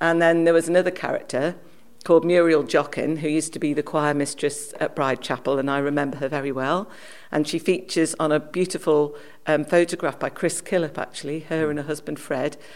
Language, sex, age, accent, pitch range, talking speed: English, female, 50-69, British, 145-165 Hz, 195 wpm